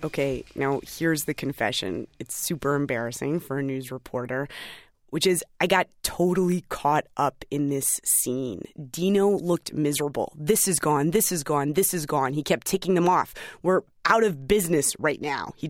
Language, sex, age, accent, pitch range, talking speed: English, female, 20-39, American, 145-185 Hz, 175 wpm